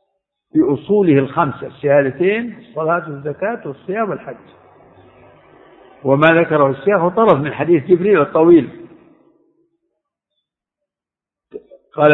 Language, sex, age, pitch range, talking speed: Arabic, male, 60-79, 140-200 Hz, 85 wpm